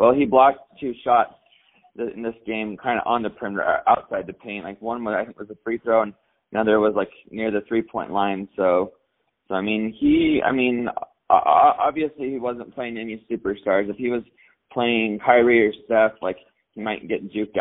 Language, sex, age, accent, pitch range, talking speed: English, male, 20-39, American, 105-120 Hz, 200 wpm